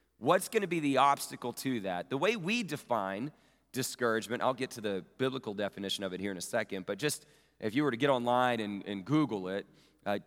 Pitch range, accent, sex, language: 105-145 Hz, American, male, English